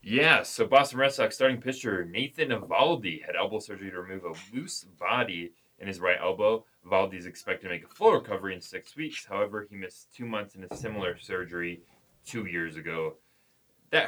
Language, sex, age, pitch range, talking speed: English, male, 20-39, 95-120 Hz, 190 wpm